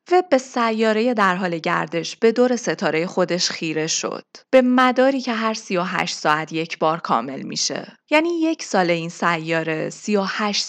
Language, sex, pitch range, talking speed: Persian, female, 175-260 Hz, 155 wpm